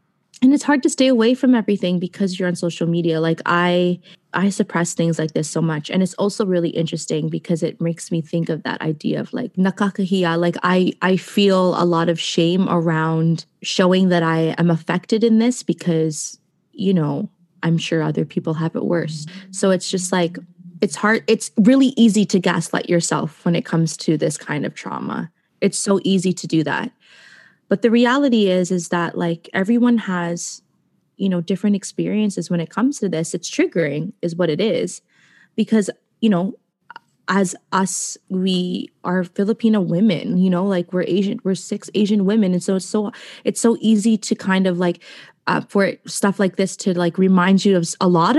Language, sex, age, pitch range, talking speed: English, female, 20-39, 170-205 Hz, 190 wpm